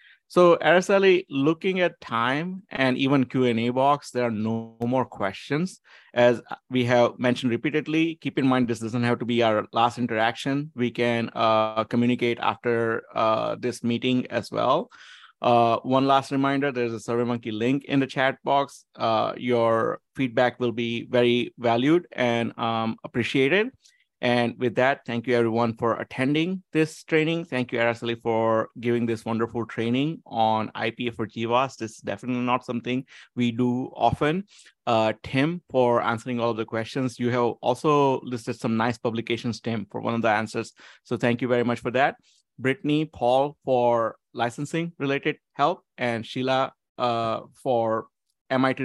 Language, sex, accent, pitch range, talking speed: English, male, Indian, 115-135 Hz, 160 wpm